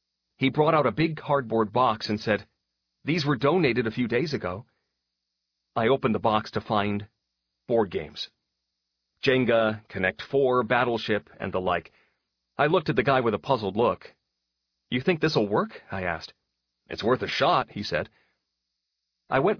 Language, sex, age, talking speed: English, male, 40-59, 165 wpm